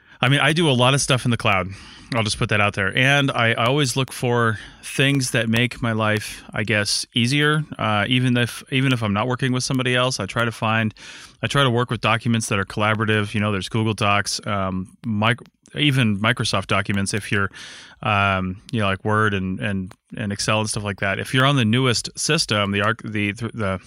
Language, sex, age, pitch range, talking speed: English, male, 30-49, 105-125 Hz, 225 wpm